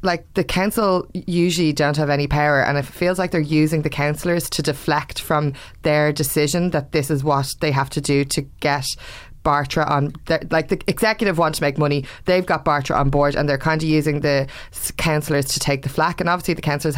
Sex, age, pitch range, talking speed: female, 20-39, 145-165 Hz, 210 wpm